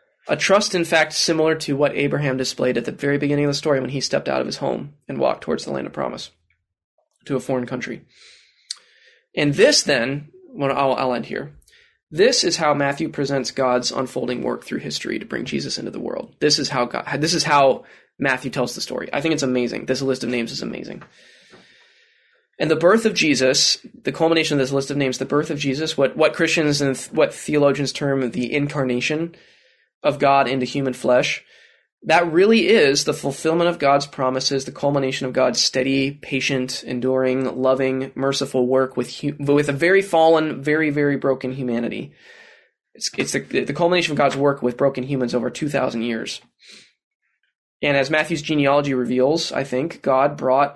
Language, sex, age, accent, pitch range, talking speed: English, male, 20-39, American, 130-150 Hz, 190 wpm